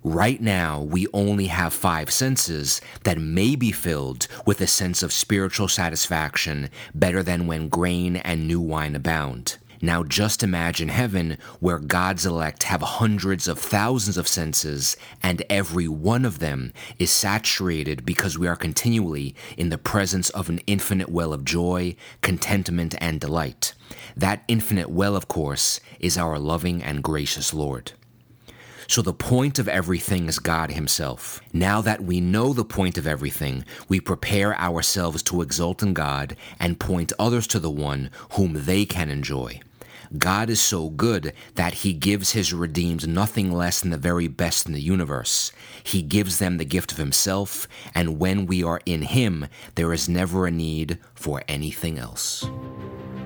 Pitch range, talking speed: 80-100 Hz, 160 wpm